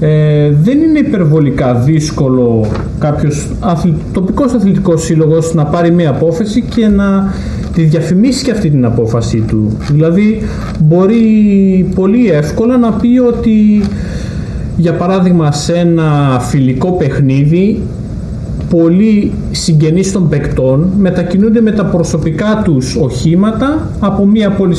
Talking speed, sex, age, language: 120 wpm, male, 40-59, Greek